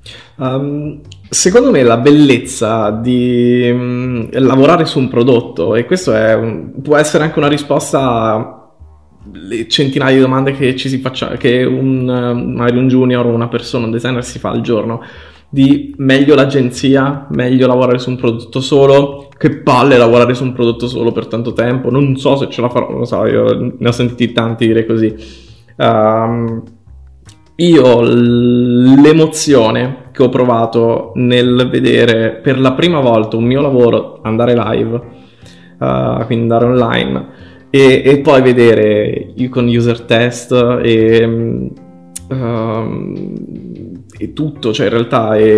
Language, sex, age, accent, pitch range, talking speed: Italian, male, 20-39, native, 115-130 Hz, 145 wpm